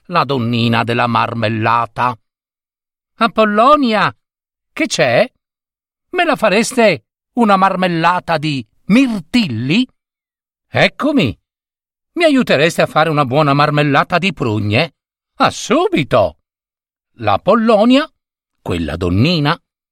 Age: 50-69